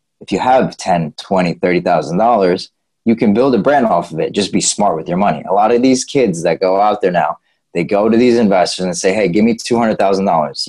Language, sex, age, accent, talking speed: English, male, 20-39, American, 230 wpm